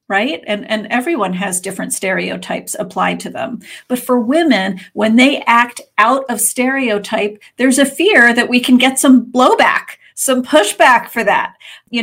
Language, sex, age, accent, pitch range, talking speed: English, female, 40-59, American, 210-255 Hz, 165 wpm